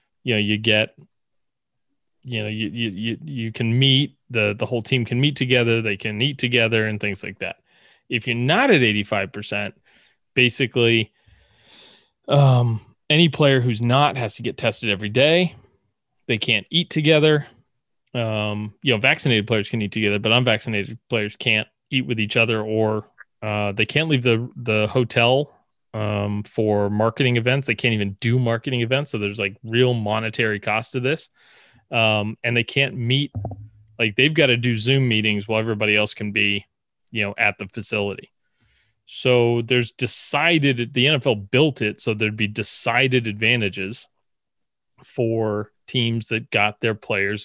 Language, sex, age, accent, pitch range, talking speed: English, male, 20-39, American, 105-125 Hz, 165 wpm